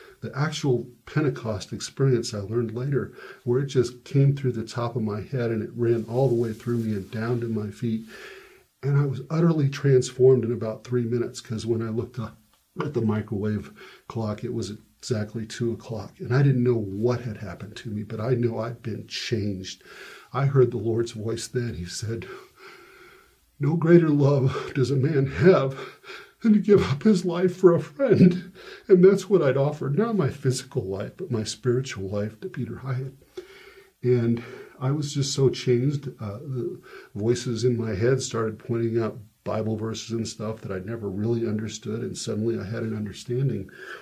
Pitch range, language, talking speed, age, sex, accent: 110-135 Hz, English, 190 wpm, 50-69, male, American